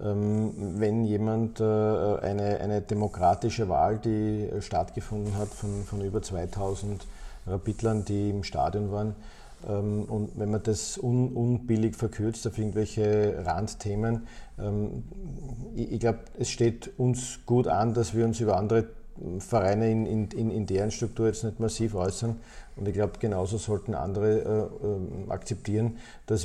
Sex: male